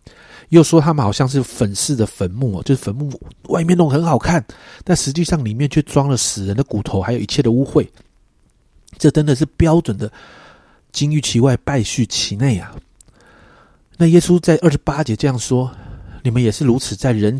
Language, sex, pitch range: Chinese, male, 105-155 Hz